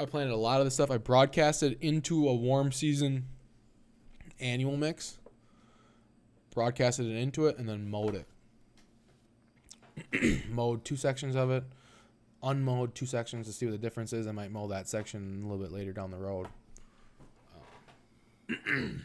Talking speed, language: 160 wpm, English